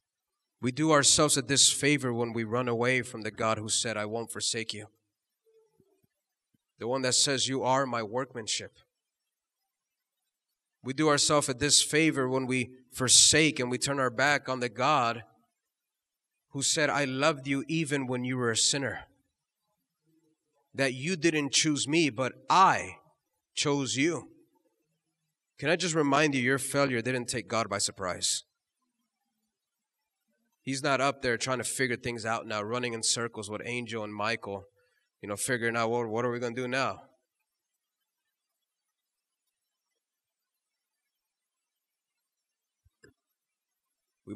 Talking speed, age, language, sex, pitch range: 140 wpm, 30-49, English, male, 115-145 Hz